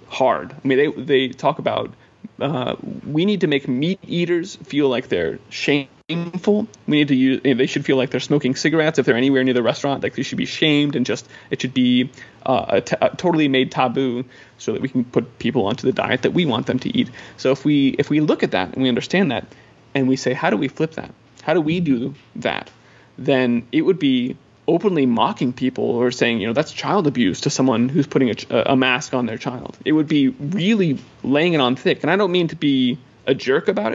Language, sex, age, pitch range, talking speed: English, male, 30-49, 130-155 Hz, 240 wpm